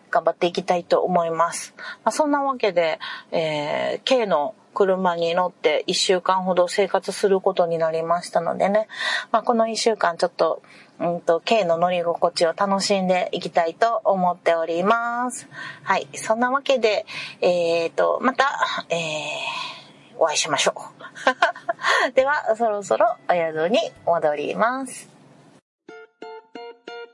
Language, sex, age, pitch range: Japanese, female, 40-59, 175-250 Hz